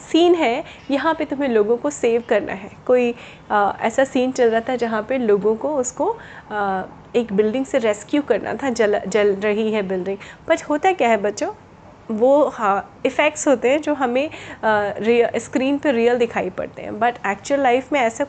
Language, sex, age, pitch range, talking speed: Hindi, female, 30-49, 215-290 Hz, 190 wpm